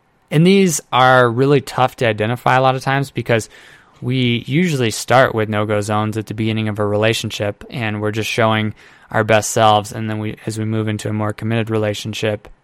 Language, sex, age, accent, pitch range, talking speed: English, male, 20-39, American, 105-125 Hz, 200 wpm